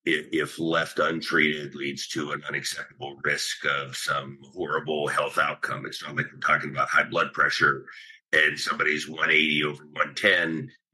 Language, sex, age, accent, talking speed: English, male, 50-69, American, 150 wpm